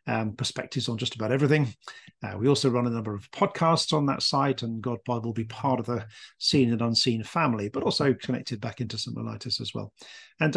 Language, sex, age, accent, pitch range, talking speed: English, male, 40-59, British, 120-150 Hz, 215 wpm